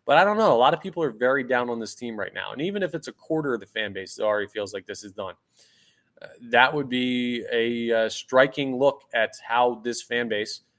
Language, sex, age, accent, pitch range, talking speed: English, male, 20-39, American, 110-130 Hz, 255 wpm